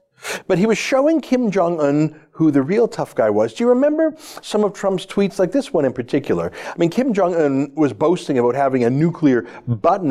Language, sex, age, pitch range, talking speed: English, male, 40-59, 140-190 Hz, 210 wpm